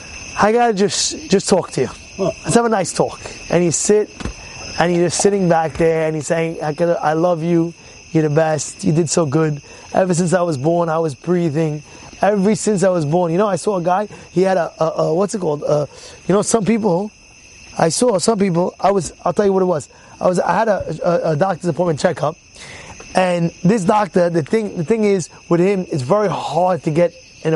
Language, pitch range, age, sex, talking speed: English, 155-195 Hz, 20-39, male, 230 wpm